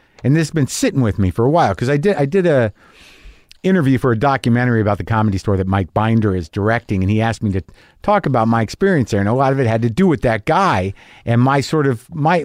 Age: 50-69